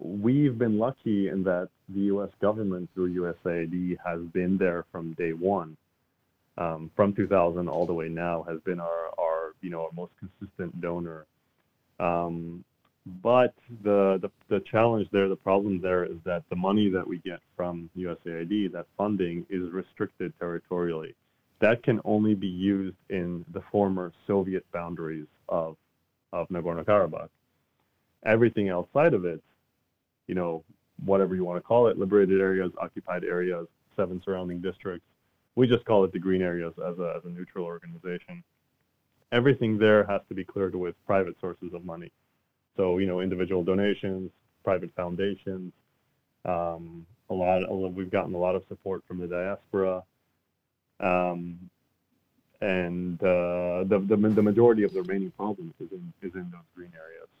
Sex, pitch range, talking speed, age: male, 85-100 Hz, 155 wpm, 30-49